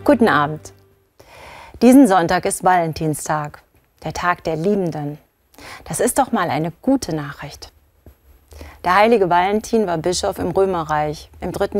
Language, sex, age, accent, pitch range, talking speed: German, female, 40-59, German, 150-205 Hz, 130 wpm